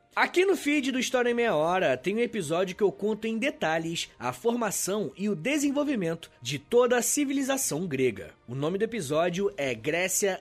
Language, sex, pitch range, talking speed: Portuguese, male, 165-265 Hz, 185 wpm